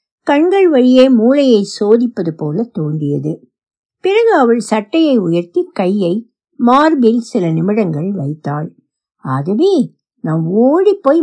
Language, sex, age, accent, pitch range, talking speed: Tamil, female, 60-79, native, 175-290 Hz, 100 wpm